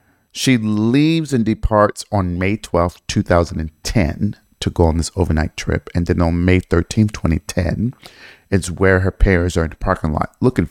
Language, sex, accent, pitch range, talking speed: English, male, American, 85-105 Hz, 170 wpm